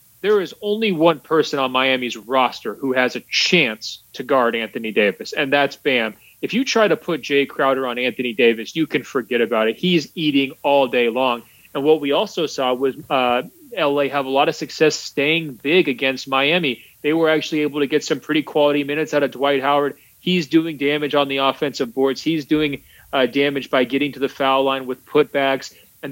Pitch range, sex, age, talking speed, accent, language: 130-155 Hz, male, 30-49, 205 wpm, American, English